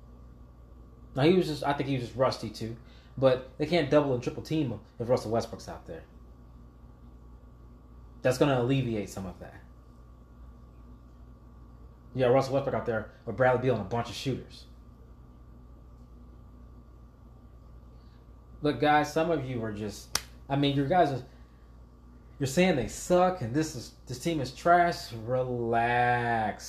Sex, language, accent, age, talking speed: male, English, American, 20-39, 150 wpm